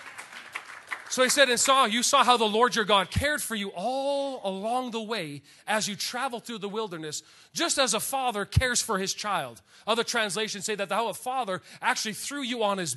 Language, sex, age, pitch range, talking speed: English, male, 30-49, 165-220 Hz, 210 wpm